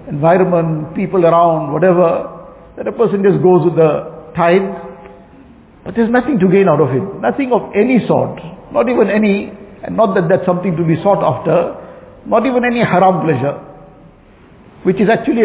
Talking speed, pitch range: 170 wpm, 165-200 Hz